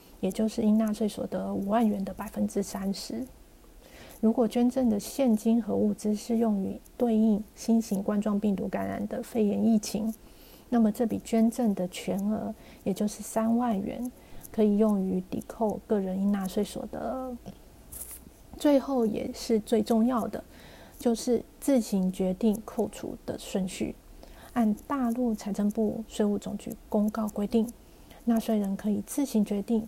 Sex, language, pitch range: female, Chinese, 200-235 Hz